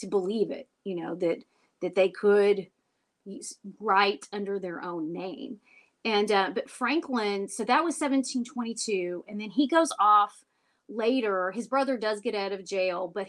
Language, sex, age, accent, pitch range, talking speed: English, female, 30-49, American, 200-250 Hz, 165 wpm